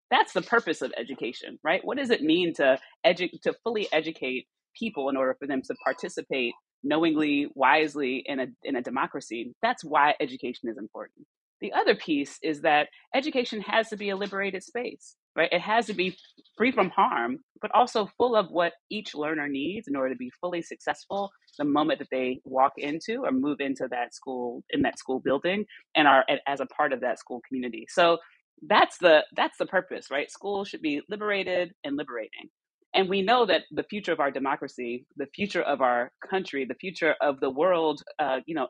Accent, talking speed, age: American, 195 wpm, 30-49